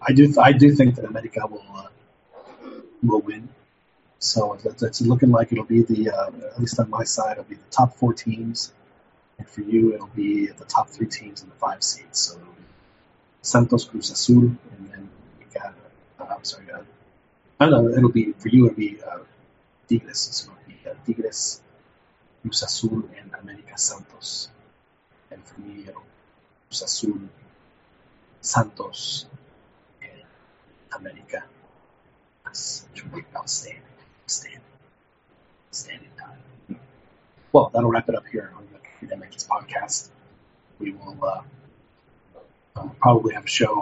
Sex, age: male, 30-49